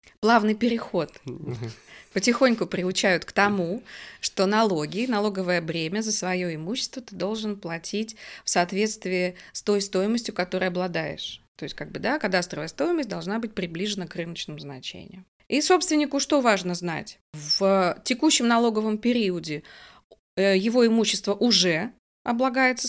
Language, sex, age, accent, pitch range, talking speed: Russian, female, 20-39, native, 185-235 Hz, 130 wpm